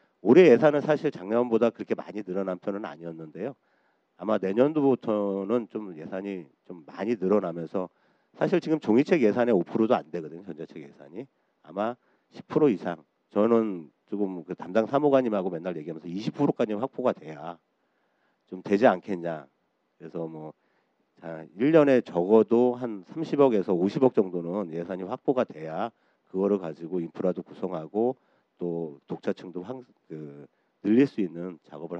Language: Korean